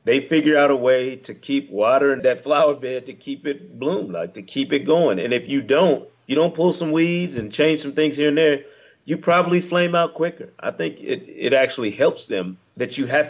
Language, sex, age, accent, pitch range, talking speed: English, male, 40-59, American, 130-160 Hz, 230 wpm